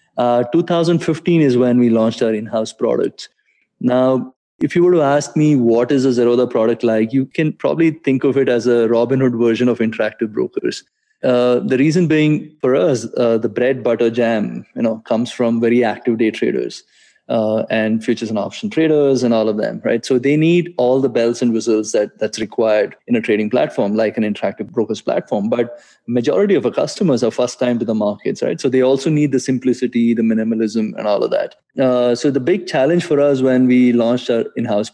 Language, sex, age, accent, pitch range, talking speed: English, male, 20-39, Indian, 115-135 Hz, 205 wpm